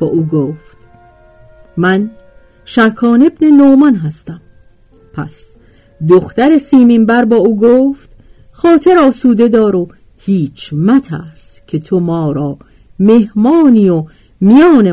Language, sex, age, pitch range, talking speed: Persian, female, 50-69, 155-235 Hz, 115 wpm